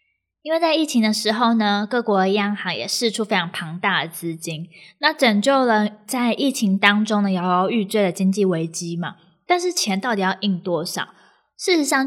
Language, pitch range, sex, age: Chinese, 190-250 Hz, female, 20-39